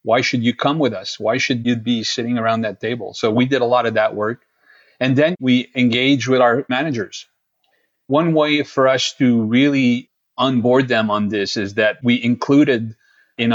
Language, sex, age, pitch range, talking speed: English, male, 40-59, 110-130 Hz, 195 wpm